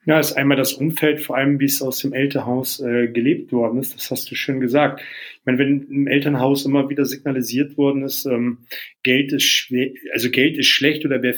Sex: male